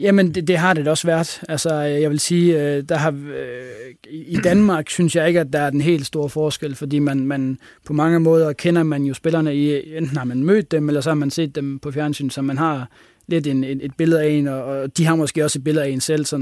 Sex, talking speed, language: male, 250 wpm, Danish